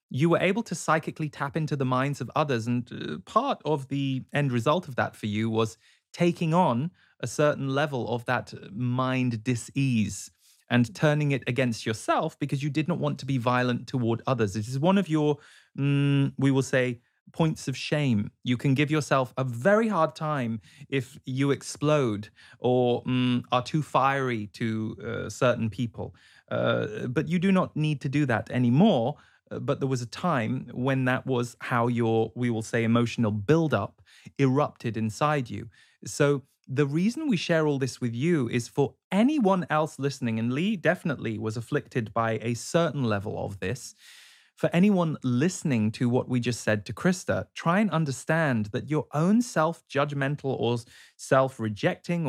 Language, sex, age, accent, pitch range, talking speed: English, male, 30-49, British, 120-155 Hz, 175 wpm